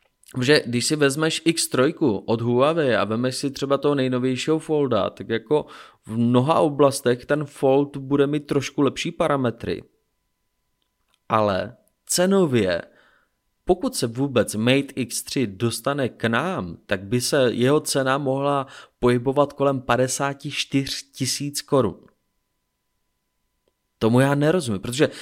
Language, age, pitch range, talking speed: Czech, 20-39, 120-140 Hz, 120 wpm